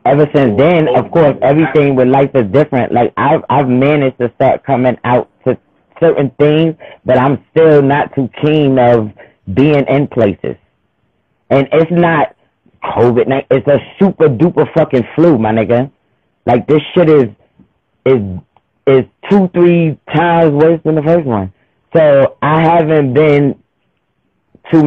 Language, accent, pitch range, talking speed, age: English, American, 120-150 Hz, 145 wpm, 30-49